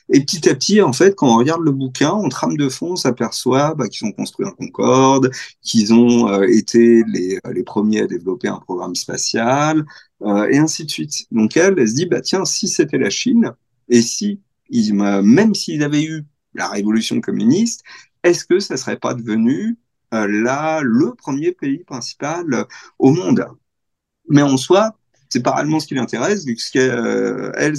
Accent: French